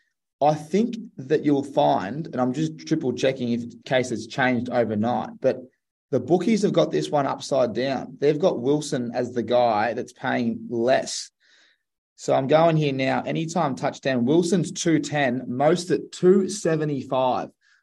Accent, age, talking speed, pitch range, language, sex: Australian, 20-39, 155 wpm, 130-165 Hz, English, male